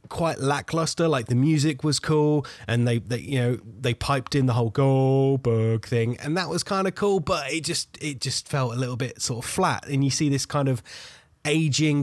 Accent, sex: British, male